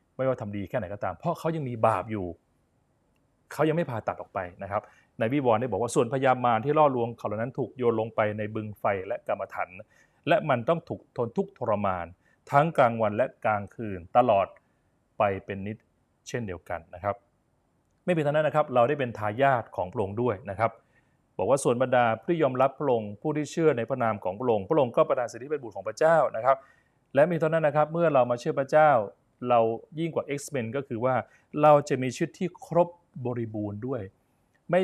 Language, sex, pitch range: Thai, male, 105-145 Hz